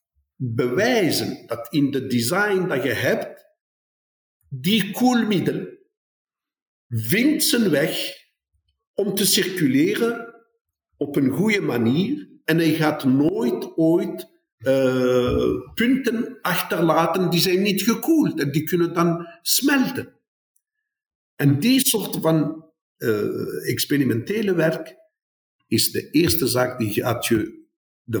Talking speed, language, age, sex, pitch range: 110 wpm, Dutch, 50-69, male, 150-220 Hz